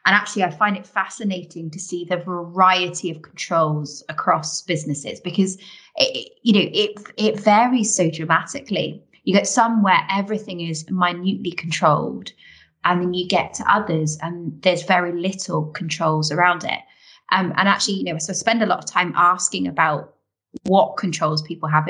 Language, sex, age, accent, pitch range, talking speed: English, female, 20-39, British, 160-195 Hz, 170 wpm